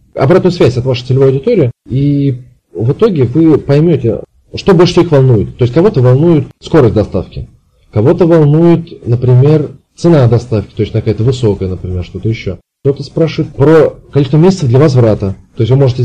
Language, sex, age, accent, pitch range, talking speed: Russian, male, 20-39, native, 110-135 Hz, 165 wpm